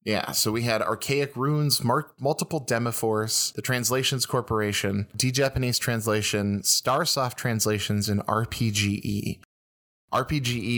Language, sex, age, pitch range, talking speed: English, male, 20-39, 100-125 Hz, 100 wpm